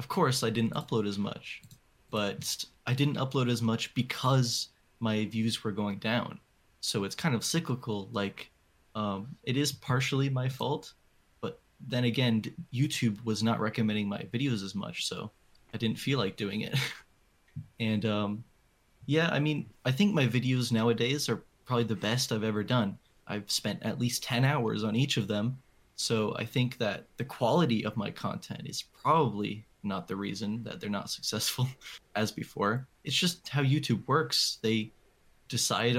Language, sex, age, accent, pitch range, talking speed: English, male, 20-39, American, 105-130 Hz, 170 wpm